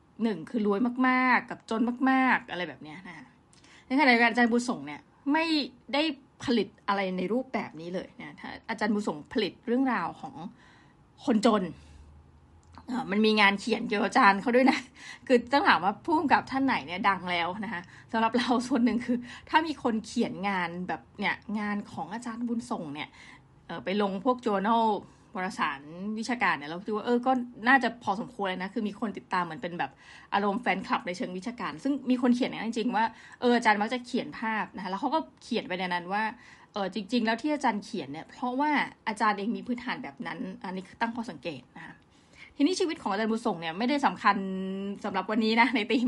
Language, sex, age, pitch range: Thai, female, 20-39, 195-250 Hz